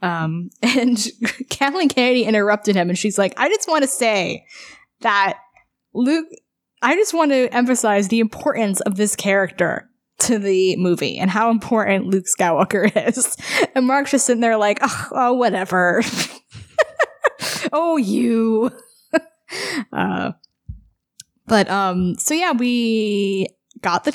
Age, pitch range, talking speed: 10-29, 185-245 Hz, 135 wpm